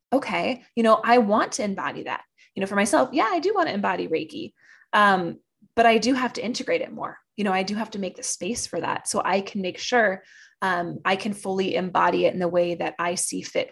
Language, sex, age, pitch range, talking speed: English, female, 20-39, 185-235 Hz, 250 wpm